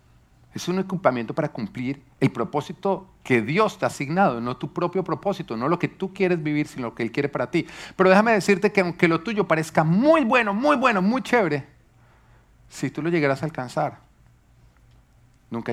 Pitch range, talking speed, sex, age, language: 110-155 Hz, 190 wpm, male, 40-59, Spanish